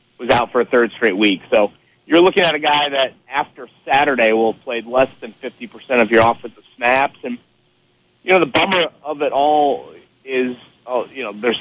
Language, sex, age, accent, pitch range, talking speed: English, male, 30-49, American, 110-135 Hz, 195 wpm